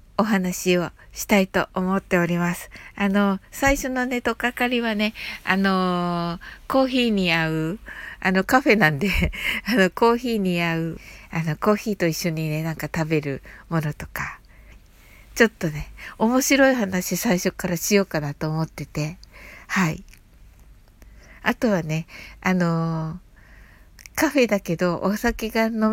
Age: 60-79